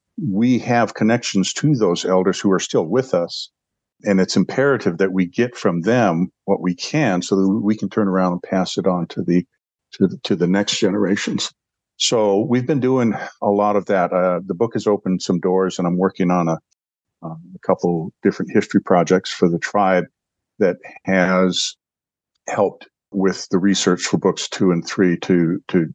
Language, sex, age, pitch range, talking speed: English, male, 50-69, 90-105 Hz, 190 wpm